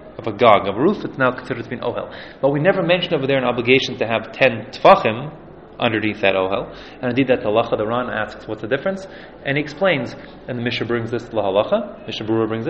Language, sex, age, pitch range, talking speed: English, male, 30-49, 110-140 Hz, 240 wpm